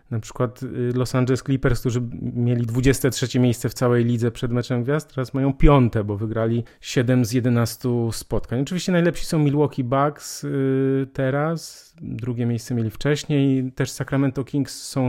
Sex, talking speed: male, 150 wpm